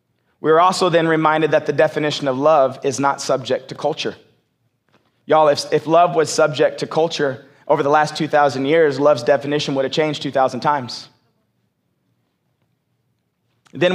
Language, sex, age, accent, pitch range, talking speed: English, male, 30-49, American, 140-180 Hz, 155 wpm